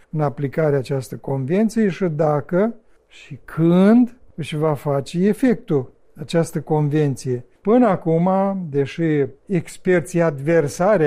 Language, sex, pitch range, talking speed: Romanian, male, 150-195 Hz, 105 wpm